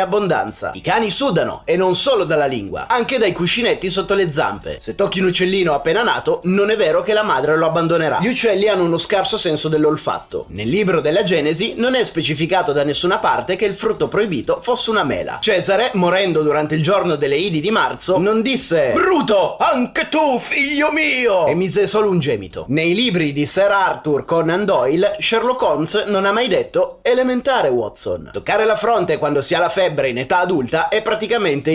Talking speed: 195 wpm